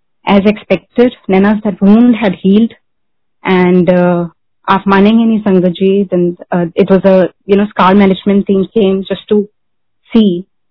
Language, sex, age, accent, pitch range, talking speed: Hindi, female, 30-49, native, 190-240 Hz, 140 wpm